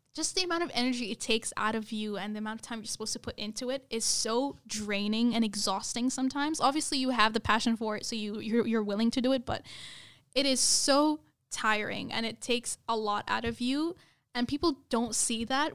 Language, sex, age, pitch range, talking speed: English, female, 10-29, 215-245 Hz, 225 wpm